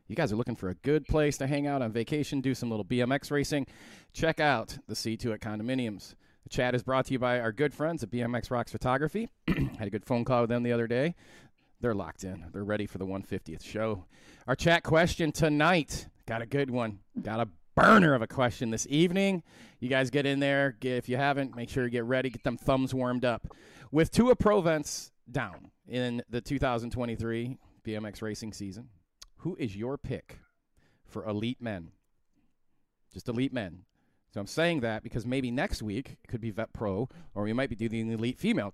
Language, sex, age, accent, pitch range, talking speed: English, male, 40-59, American, 105-140 Hz, 205 wpm